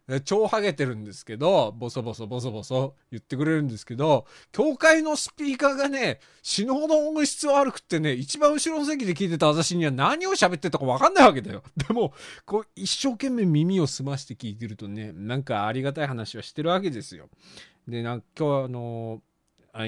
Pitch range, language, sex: 115-195 Hz, Japanese, male